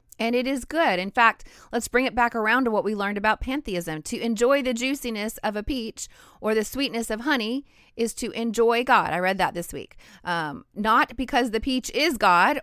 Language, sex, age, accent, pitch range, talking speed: English, female, 30-49, American, 205-265 Hz, 215 wpm